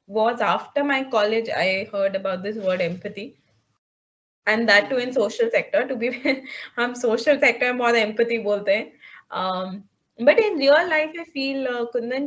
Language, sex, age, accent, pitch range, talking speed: Hindi, female, 20-39, native, 215-280 Hz, 160 wpm